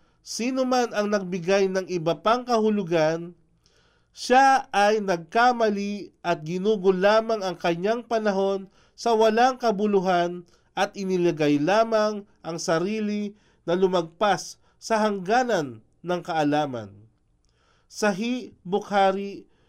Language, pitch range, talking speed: Filipino, 155-210 Hz, 100 wpm